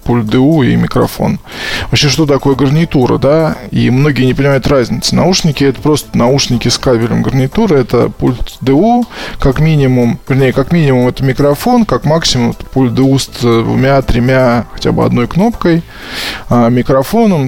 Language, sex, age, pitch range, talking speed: Russian, male, 20-39, 125-155 Hz, 150 wpm